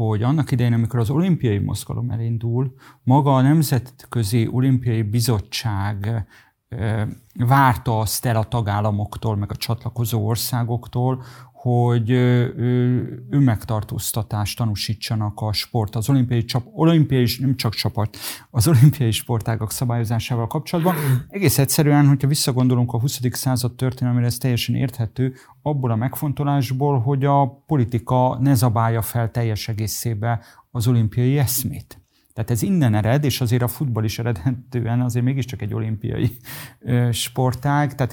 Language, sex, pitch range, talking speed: Hungarian, male, 115-130 Hz, 130 wpm